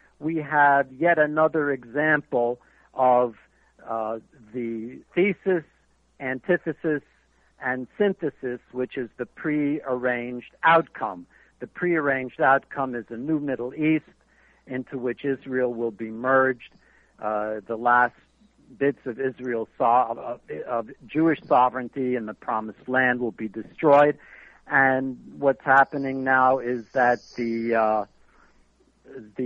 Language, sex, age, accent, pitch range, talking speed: English, male, 60-79, American, 120-150 Hz, 120 wpm